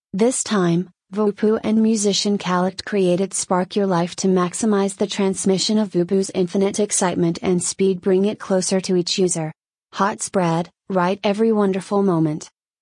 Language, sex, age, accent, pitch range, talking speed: English, female, 30-49, American, 180-205 Hz, 150 wpm